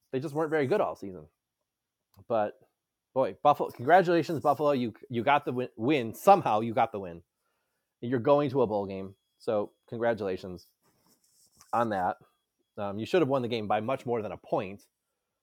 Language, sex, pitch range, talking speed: English, male, 110-155 Hz, 180 wpm